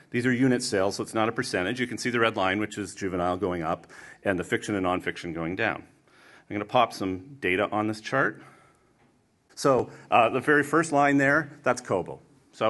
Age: 40-59